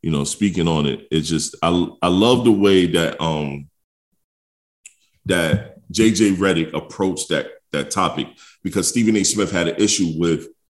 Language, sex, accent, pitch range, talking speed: English, male, American, 90-135 Hz, 160 wpm